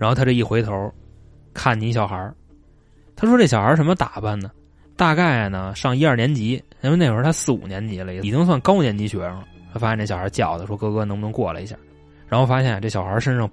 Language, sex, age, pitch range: Chinese, male, 20-39, 100-160 Hz